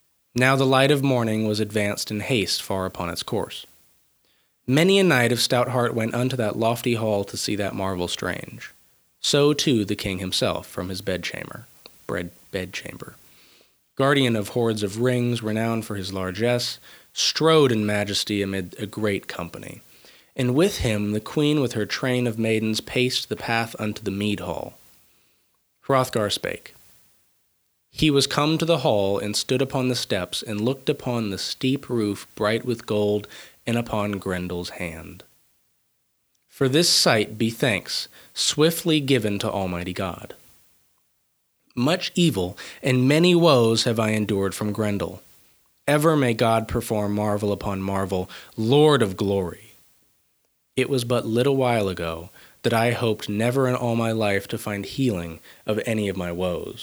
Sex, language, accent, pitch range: male, English, American, 100-125 Hz